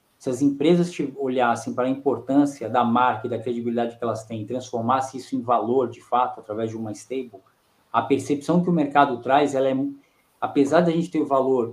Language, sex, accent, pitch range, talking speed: Portuguese, male, Brazilian, 125-155 Hz, 205 wpm